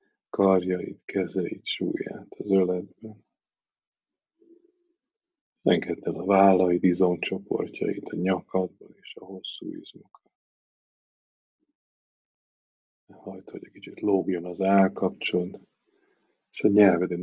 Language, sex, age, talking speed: Hungarian, male, 30-49, 85 wpm